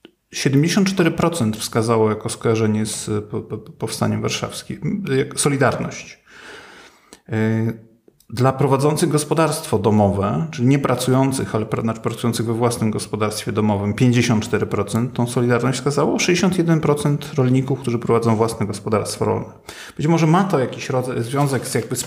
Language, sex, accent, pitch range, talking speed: Polish, male, native, 110-130 Hz, 110 wpm